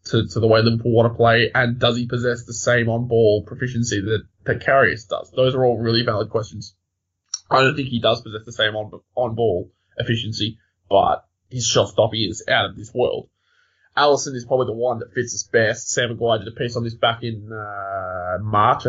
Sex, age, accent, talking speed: male, 20-39, Australian, 205 wpm